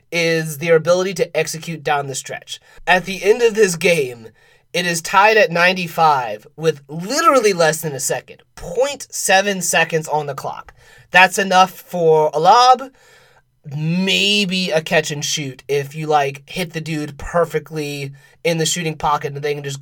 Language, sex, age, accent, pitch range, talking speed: English, male, 30-49, American, 150-180 Hz, 165 wpm